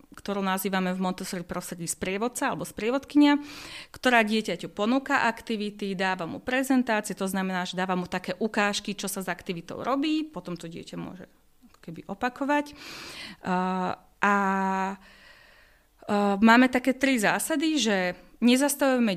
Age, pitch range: 30-49, 190-245 Hz